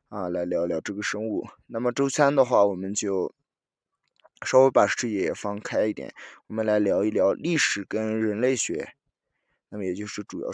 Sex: male